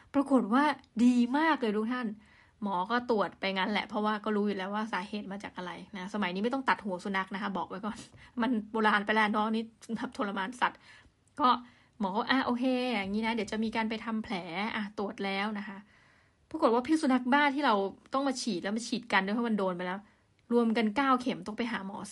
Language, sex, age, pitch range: Thai, female, 20-39, 210-255 Hz